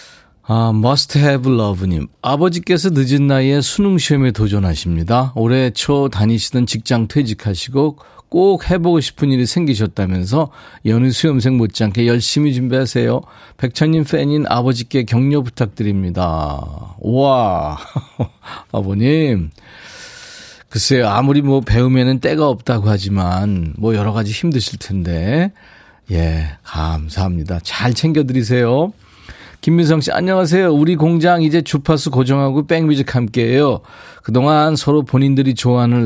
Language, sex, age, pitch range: Korean, male, 40-59, 105-145 Hz